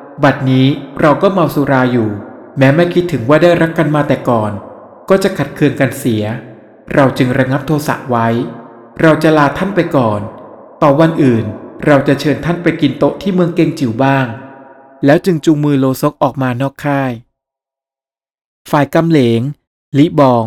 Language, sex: Thai, male